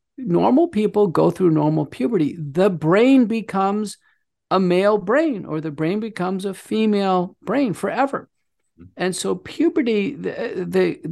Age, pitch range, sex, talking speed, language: 50-69, 155-205 Hz, male, 130 wpm, English